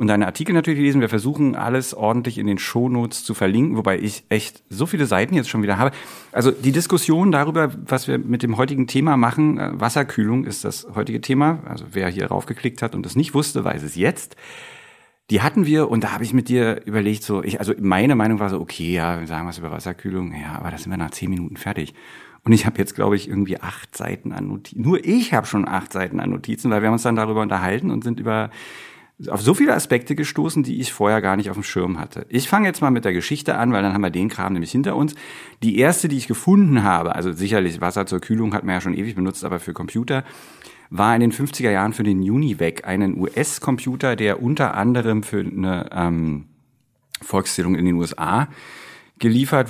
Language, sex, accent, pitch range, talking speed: German, male, German, 95-130 Hz, 225 wpm